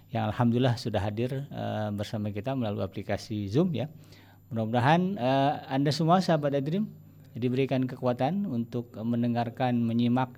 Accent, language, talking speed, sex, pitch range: native, Indonesian, 115 wpm, male, 105-140 Hz